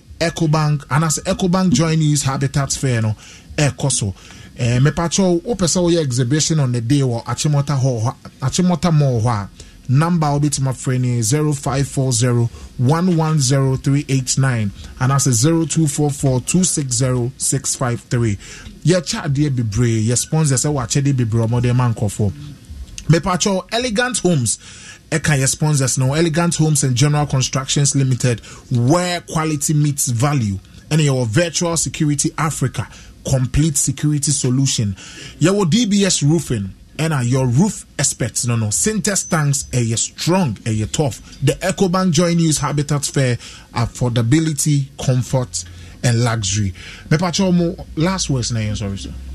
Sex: male